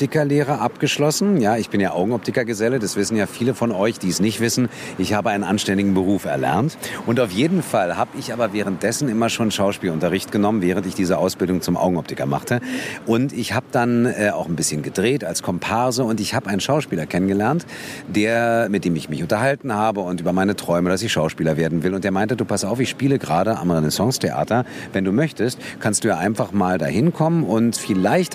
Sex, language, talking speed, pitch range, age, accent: male, German, 205 wpm, 100-130 Hz, 50-69, German